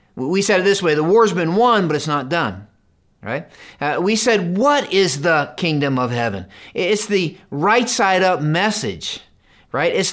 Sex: male